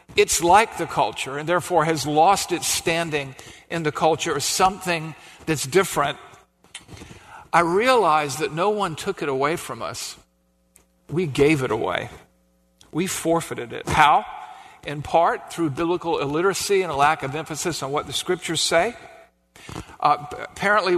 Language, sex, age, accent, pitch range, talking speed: English, male, 50-69, American, 145-190 Hz, 150 wpm